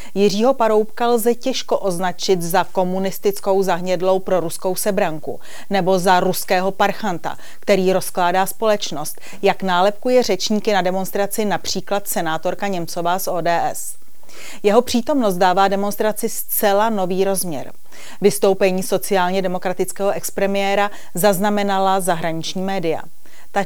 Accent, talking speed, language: native, 110 wpm, Czech